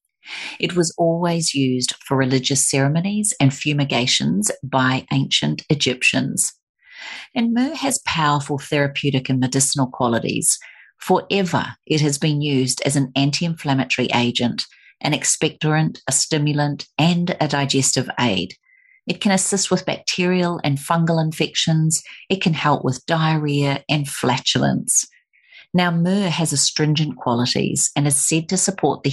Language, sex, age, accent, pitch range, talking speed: English, female, 40-59, Australian, 135-170 Hz, 130 wpm